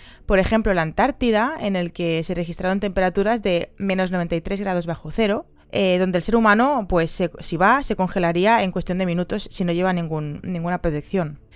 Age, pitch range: 20-39, 175-215 Hz